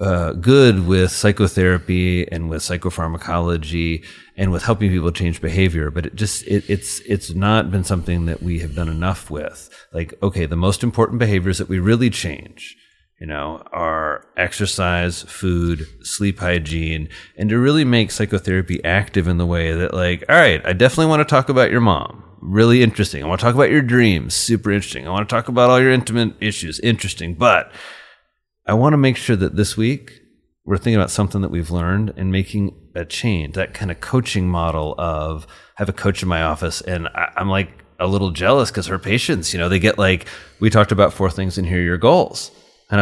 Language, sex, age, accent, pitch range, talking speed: English, male, 30-49, American, 85-110 Hz, 200 wpm